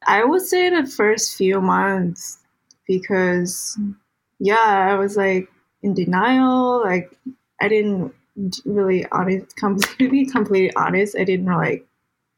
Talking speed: 125 wpm